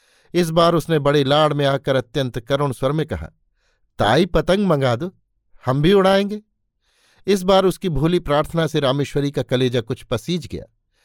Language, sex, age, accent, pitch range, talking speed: Hindi, male, 50-69, native, 135-170 Hz, 170 wpm